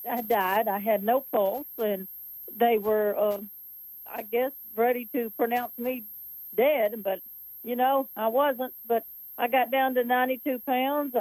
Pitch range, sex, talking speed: 220-260 Hz, female, 155 wpm